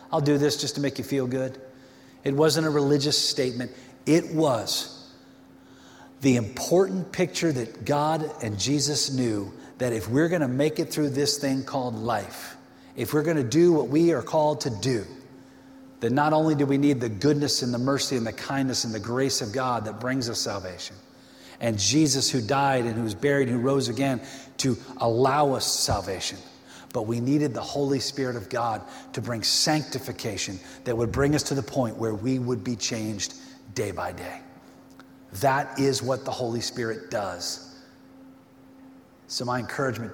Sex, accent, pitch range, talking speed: male, American, 115-145 Hz, 180 wpm